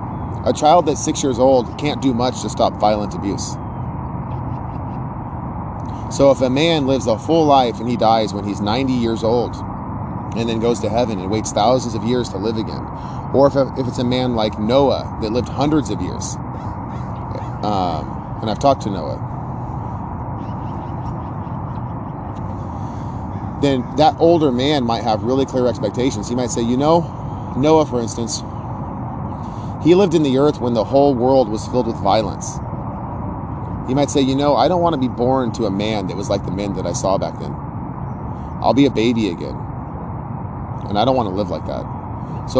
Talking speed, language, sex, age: 175 wpm, English, male, 30-49